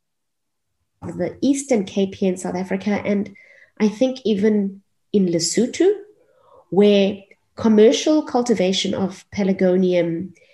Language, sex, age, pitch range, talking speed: English, female, 30-49, 185-250 Hz, 100 wpm